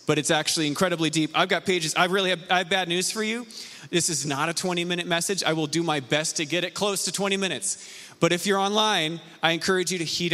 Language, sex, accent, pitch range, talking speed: English, male, American, 150-190 Hz, 260 wpm